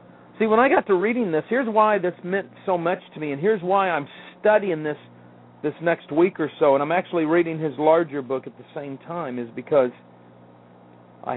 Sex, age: male, 40-59